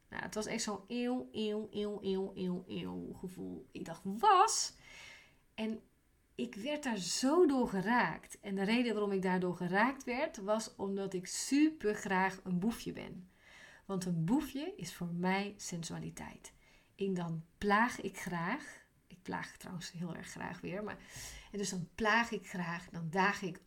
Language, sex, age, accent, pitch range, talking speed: Dutch, female, 30-49, Dutch, 180-220 Hz, 165 wpm